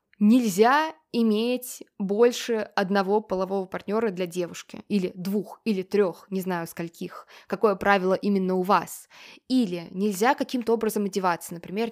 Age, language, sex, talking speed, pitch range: 20-39, Russian, female, 130 wpm, 195-250 Hz